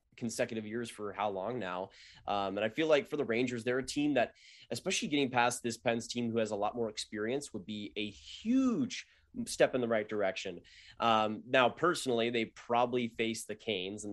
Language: English